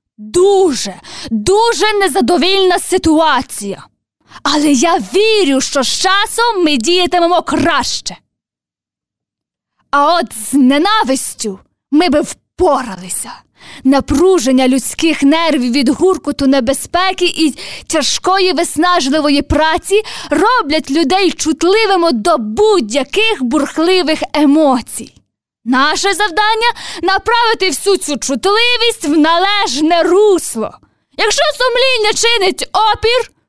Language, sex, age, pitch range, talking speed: Ukrainian, female, 20-39, 285-390 Hz, 90 wpm